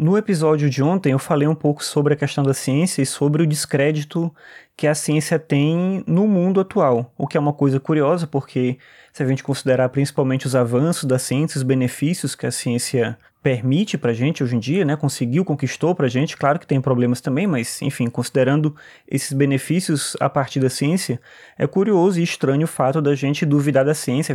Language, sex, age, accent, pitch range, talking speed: Portuguese, male, 20-39, Brazilian, 135-165 Hz, 200 wpm